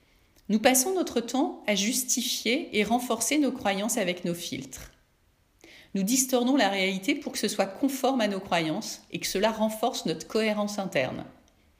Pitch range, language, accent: 175-245 Hz, French, French